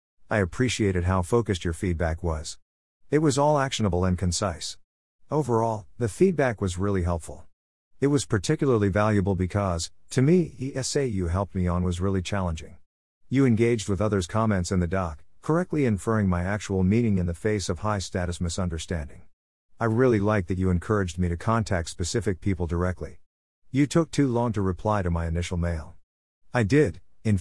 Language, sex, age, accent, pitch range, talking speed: English, male, 50-69, American, 90-115 Hz, 170 wpm